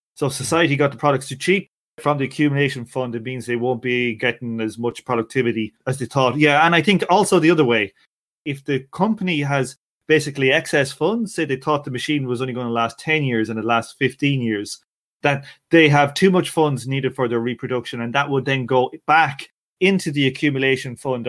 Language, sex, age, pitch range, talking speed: English, male, 30-49, 125-155 Hz, 210 wpm